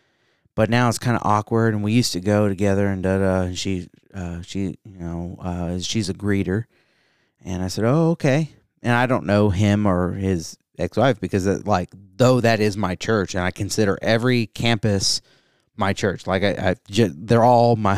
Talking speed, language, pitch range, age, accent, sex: 185 wpm, English, 95-120 Hz, 30-49, American, male